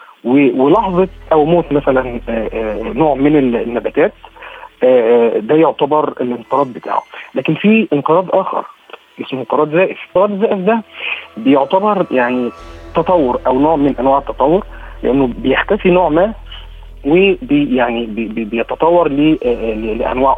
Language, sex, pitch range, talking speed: Arabic, male, 125-160 Hz, 110 wpm